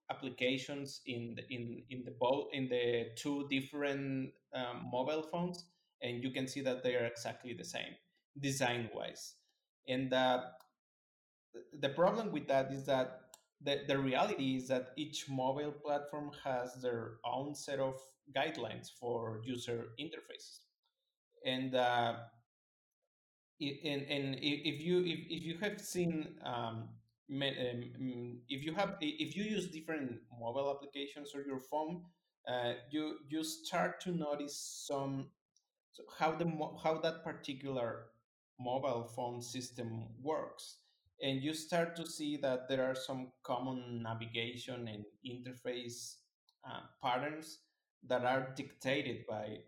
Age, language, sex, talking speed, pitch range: 30-49, English, male, 135 wpm, 120-150 Hz